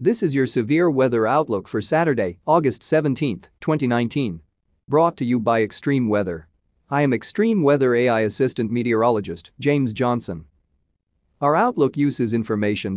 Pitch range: 110-145 Hz